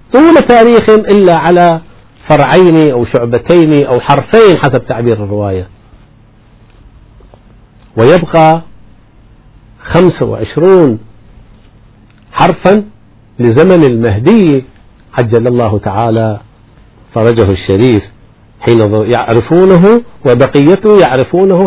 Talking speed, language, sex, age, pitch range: 70 wpm, Arabic, male, 50-69, 110-145 Hz